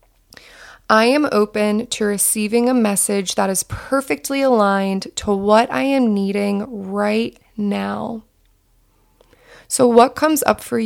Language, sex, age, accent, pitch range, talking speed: English, female, 20-39, American, 195-250 Hz, 125 wpm